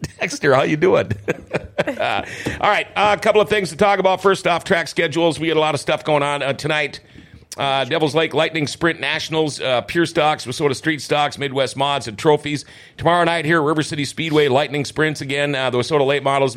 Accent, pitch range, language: American, 120-150 Hz, English